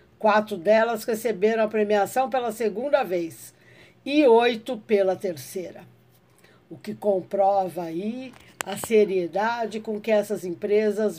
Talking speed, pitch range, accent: 120 wpm, 190-220 Hz, Brazilian